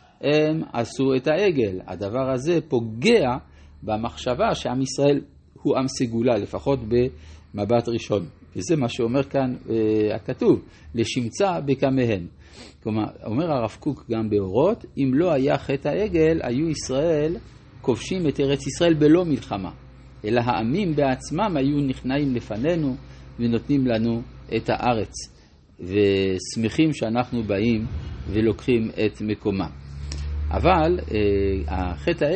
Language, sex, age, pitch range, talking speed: Hebrew, male, 50-69, 105-140 Hz, 115 wpm